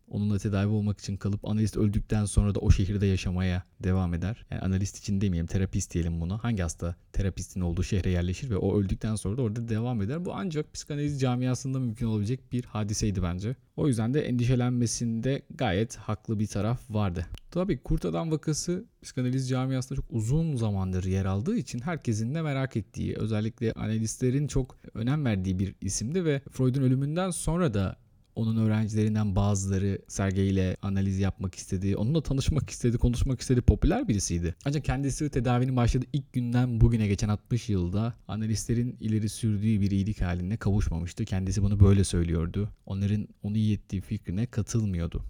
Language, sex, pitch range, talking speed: Turkish, male, 100-130 Hz, 160 wpm